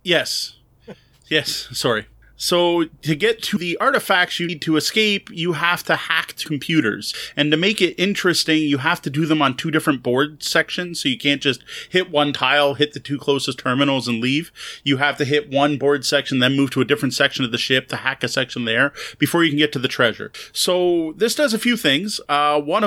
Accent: American